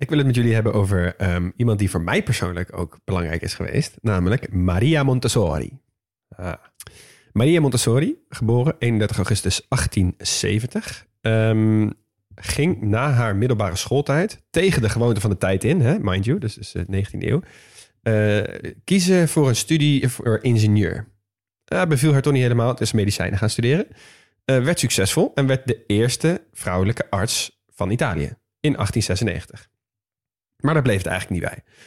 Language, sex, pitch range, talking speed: Dutch, male, 105-135 Hz, 155 wpm